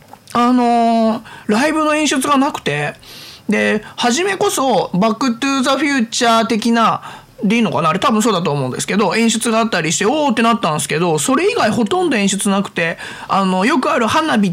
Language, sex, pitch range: Japanese, male, 185-265 Hz